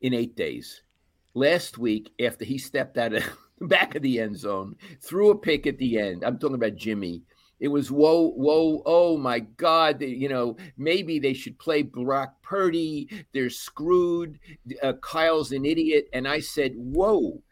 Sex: male